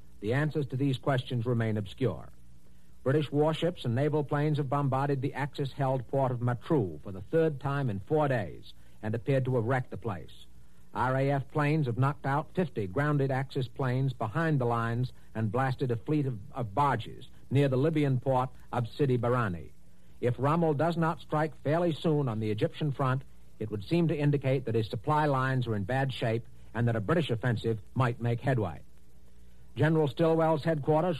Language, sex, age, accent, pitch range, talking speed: English, male, 60-79, American, 120-150 Hz, 180 wpm